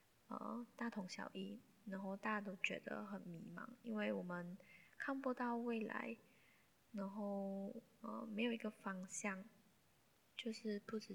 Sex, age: female, 10-29